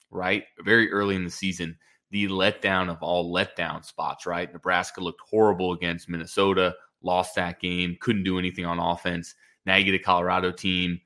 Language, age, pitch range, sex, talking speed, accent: English, 20-39, 85-95 Hz, male, 175 wpm, American